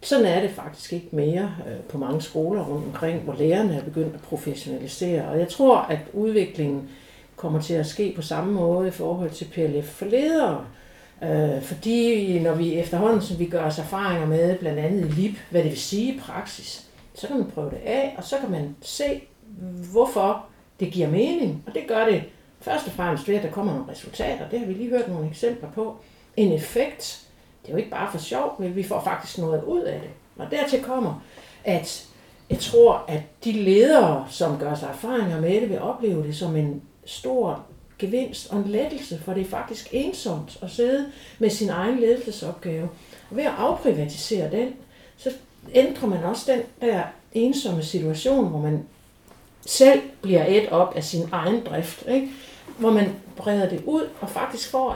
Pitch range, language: 165-235 Hz, Danish